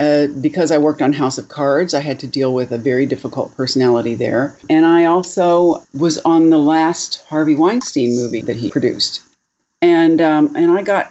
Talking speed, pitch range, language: 195 wpm, 135-220 Hz, English